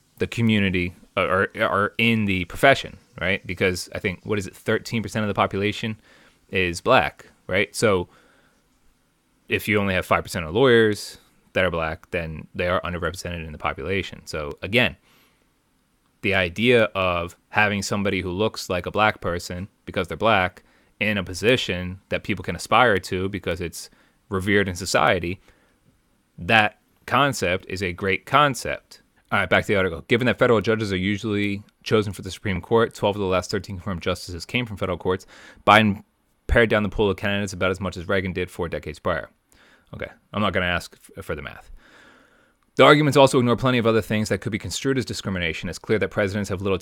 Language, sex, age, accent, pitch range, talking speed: English, male, 30-49, American, 90-110 Hz, 190 wpm